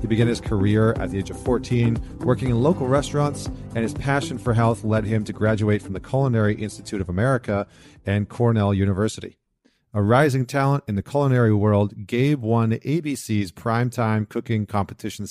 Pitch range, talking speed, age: 100-125 Hz, 175 wpm, 40-59